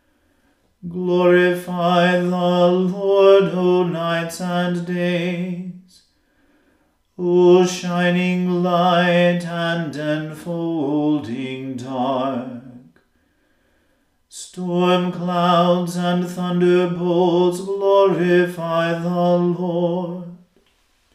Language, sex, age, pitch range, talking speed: English, male, 40-59, 170-180 Hz, 55 wpm